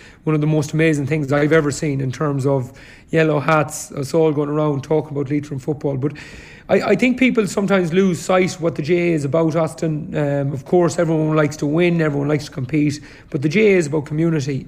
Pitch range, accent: 145-160 Hz, Irish